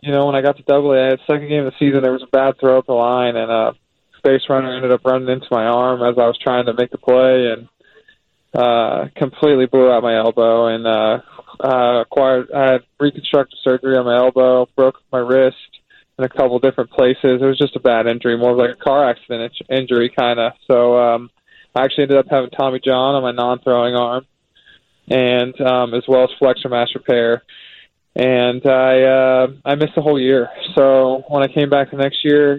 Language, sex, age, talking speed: English, male, 20-39, 215 wpm